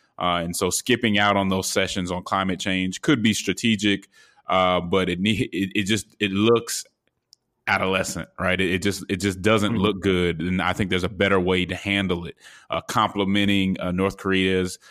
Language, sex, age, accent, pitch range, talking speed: English, male, 20-39, American, 90-100 Hz, 190 wpm